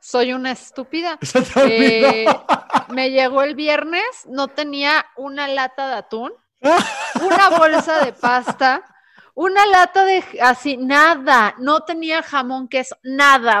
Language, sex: Spanish, female